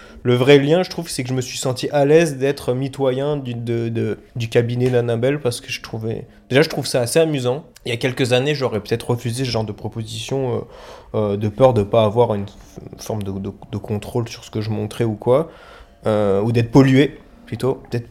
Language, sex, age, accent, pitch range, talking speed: French, male, 20-39, French, 110-130 Hz, 230 wpm